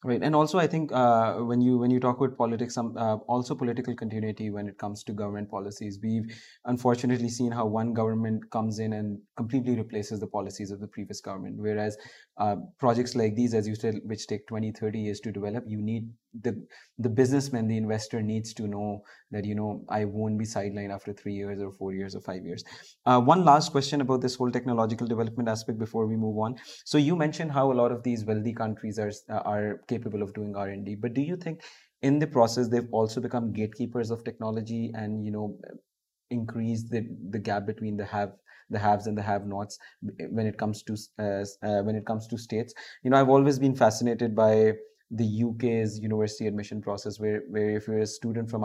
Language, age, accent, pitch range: English, 20-39, Indian, 105-120 Hz